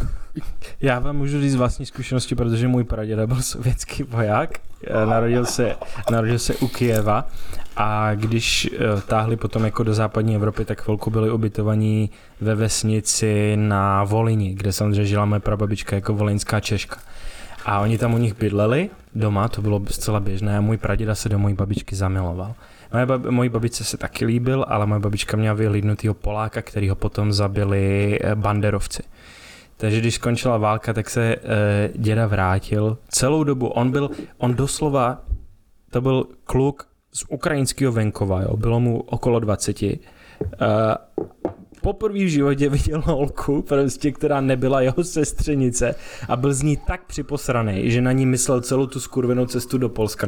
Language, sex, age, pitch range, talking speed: Czech, male, 20-39, 105-125 Hz, 155 wpm